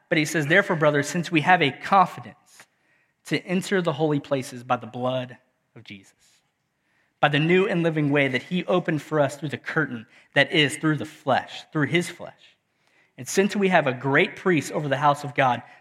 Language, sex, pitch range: English, male, 130-165 Hz